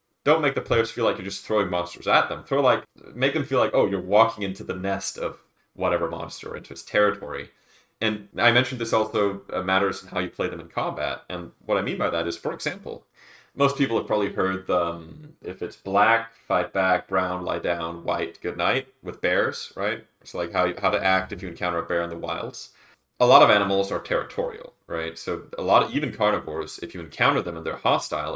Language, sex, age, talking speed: English, male, 30-49, 230 wpm